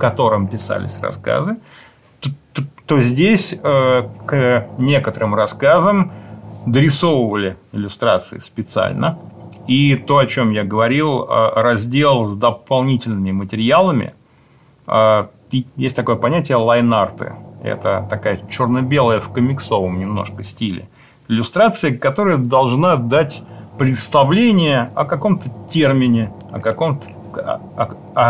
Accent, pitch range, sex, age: native, 110-140 Hz, male, 30-49